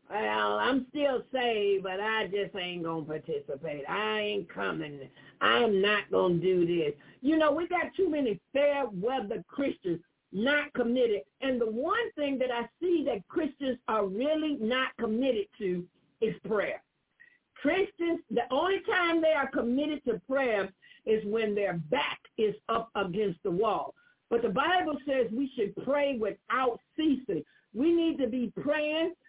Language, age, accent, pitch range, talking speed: English, 50-69, American, 215-310 Hz, 160 wpm